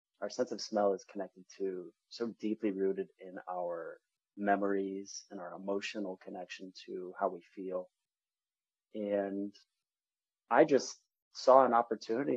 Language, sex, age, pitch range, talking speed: English, male, 30-49, 95-110 Hz, 130 wpm